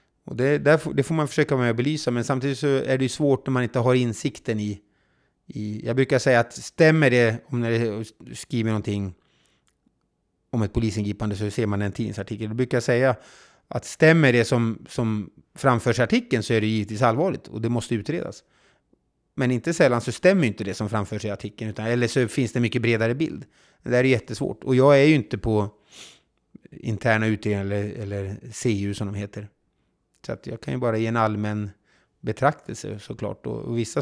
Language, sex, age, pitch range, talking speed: Swedish, male, 30-49, 105-130 Hz, 200 wpm